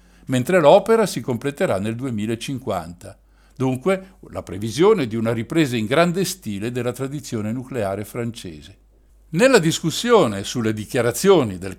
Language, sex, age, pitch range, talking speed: Italian, male, 60-79, 110-160 Hz, 120 wpm